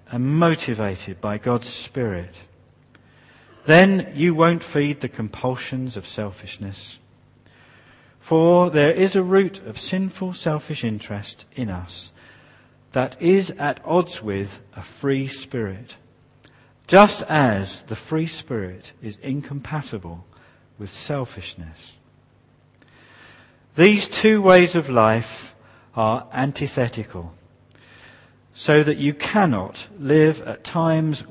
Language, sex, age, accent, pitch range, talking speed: English, male, 50-69, British, 105-145 Hz, 105 wpm